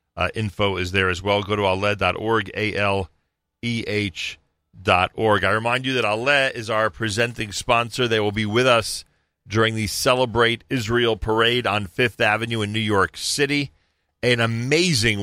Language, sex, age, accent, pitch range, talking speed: English, male, 40-59, American, 90-115 Hz, 145 wpm